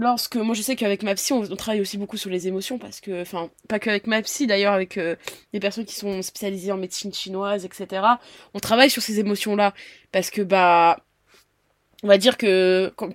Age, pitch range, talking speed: 20-39, 195-235 Hz, 215 wpm